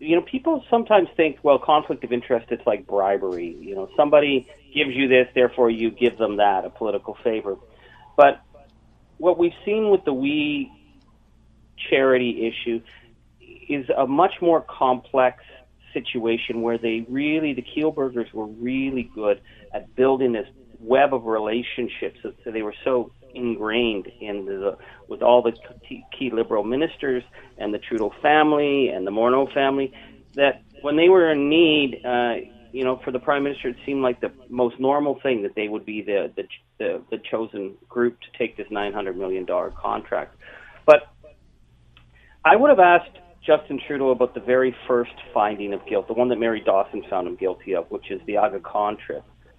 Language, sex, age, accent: English, male, 40-59, American